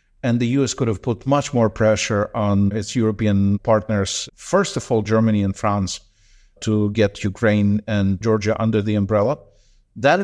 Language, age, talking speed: English, 50-69, 165 wpm